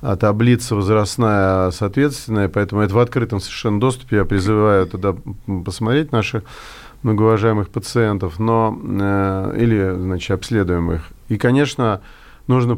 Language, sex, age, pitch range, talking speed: Russian, male, 40-59, 100-125 Hz, 115 wpm